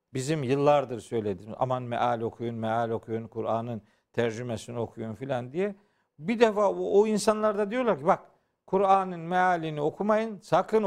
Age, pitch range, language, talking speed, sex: 50-69, 145-215 Hz, Turkish, 140 wpm, male